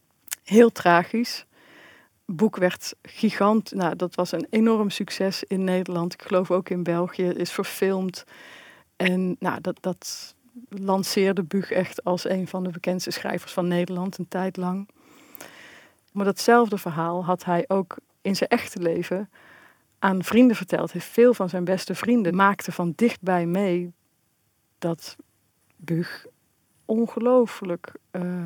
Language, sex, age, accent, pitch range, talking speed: Dutch, female, 40-59, Dutch, 175-200 Hz, 135 wpm